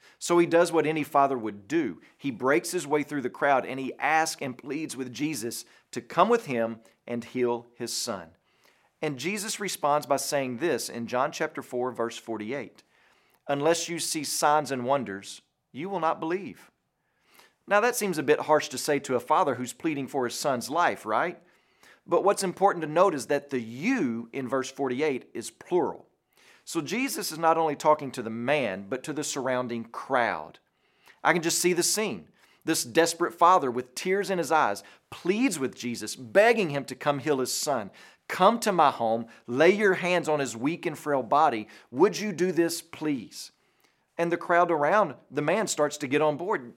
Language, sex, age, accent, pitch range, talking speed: English, male, 40-59, American, 130-180 Hz, 195 wpm